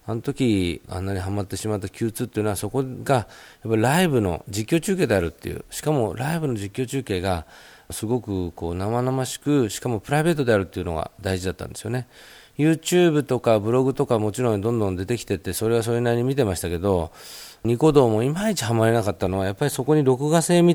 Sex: male